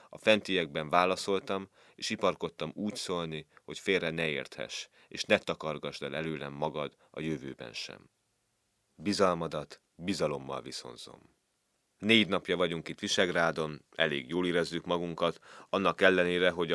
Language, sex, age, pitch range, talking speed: Hungarian, male, 30-49, 80-100 Hz, 125 wpm